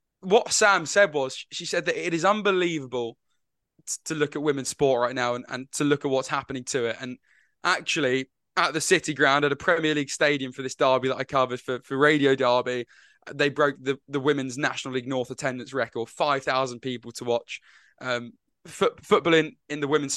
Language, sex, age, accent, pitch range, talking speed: English, male, 10-29, British, 130-155 Hz, 200 wpm